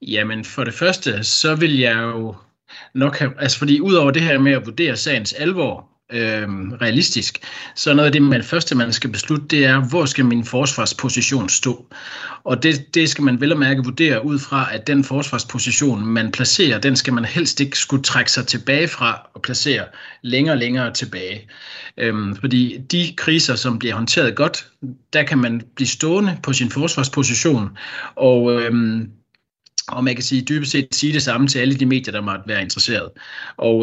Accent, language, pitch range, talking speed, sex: native, Danish, 120-145 Hz, 190 wpm, male